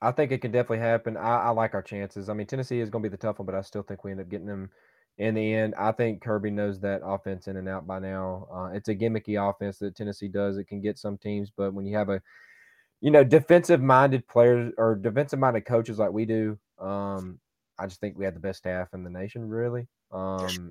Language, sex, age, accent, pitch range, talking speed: English, male, 20-39, American, 95-115 Hz, 255 wpm